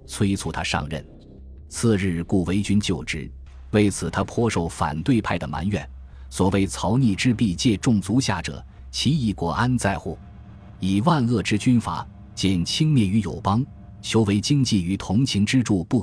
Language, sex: Chinese, male